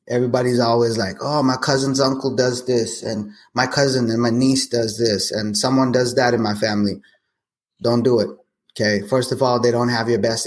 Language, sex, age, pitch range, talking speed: English, male, 20-39, 105-125 Hz, 205 wpm